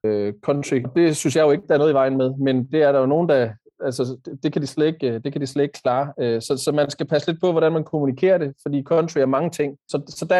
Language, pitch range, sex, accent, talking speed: Danish, 130-155 Hz, male, native, 265 wpm